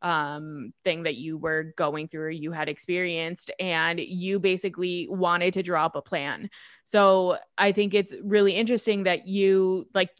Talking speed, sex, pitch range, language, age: 165 wpm, female, 175-205 Hz, English, 20-39